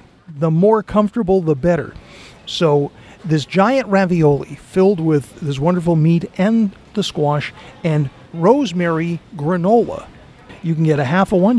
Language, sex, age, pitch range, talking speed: English, male, 40-59, 145-190 Hz, 140 wpm